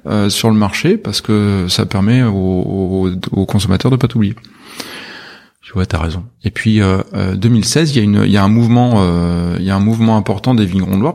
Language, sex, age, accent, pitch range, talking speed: French, male, 30-49, French, 95-125 Hz, 235 wpm